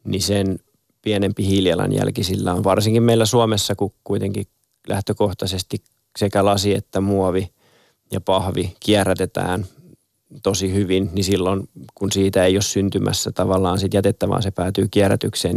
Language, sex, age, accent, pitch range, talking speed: Finnish, male, 20-39, native, 95-100 Hz, 135 wpm